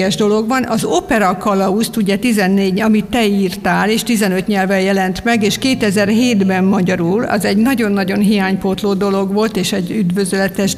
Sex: female